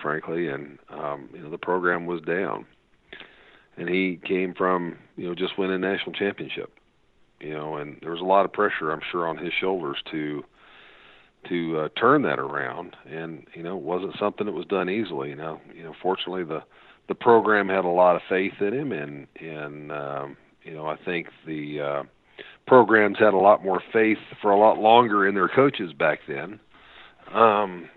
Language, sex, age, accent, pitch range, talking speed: English, male, 40-59, American, 80-95 Hz, 195 wpm